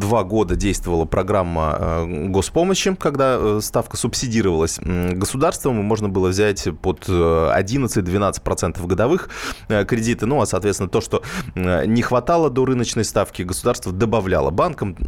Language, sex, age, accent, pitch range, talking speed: Russian, male, 20-39, native, 90-120 Hz, 120 wpm